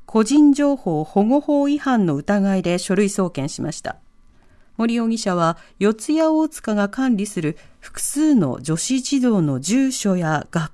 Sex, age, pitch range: female, 40-59, 170-265 Hz